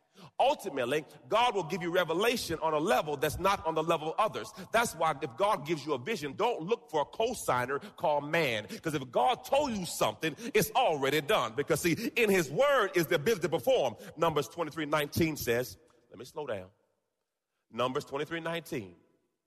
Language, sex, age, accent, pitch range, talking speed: English, male, 30-49, American, 140-200 Hz, 190 wpm